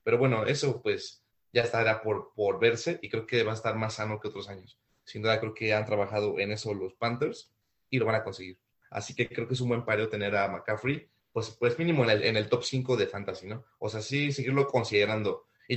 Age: 30-49